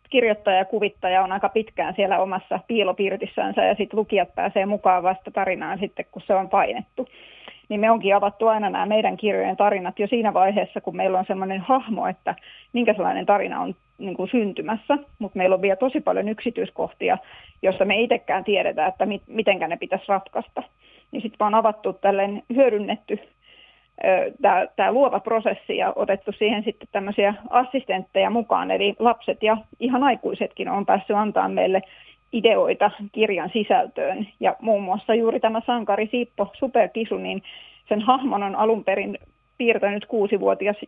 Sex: female